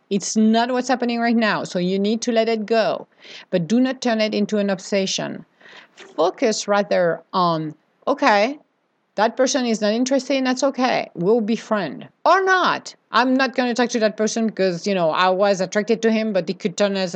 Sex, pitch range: female, 190-245 Hz